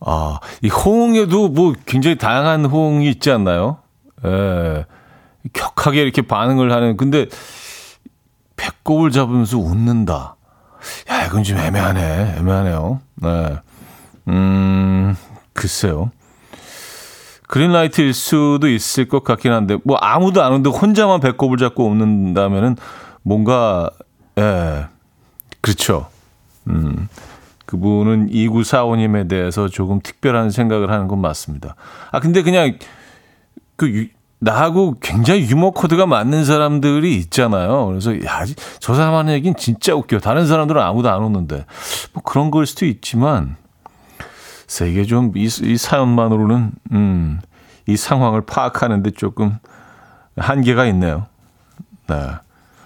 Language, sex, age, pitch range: Korean, male, 40-59, 95-140 Hz